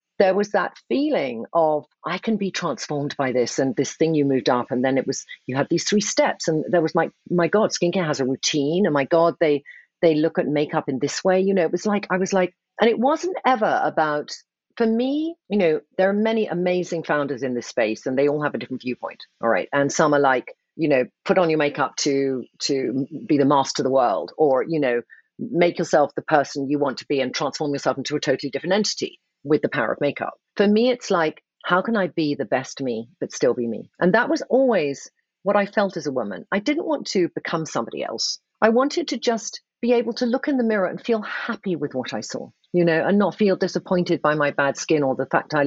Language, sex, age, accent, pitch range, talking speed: English, female, 40-59, British, 145-215 Hz, 245 wpm